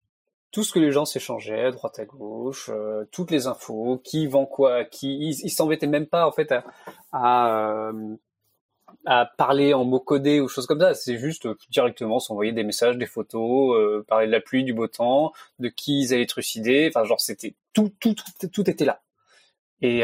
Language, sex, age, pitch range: French, male, 20-39, 115-145 Hz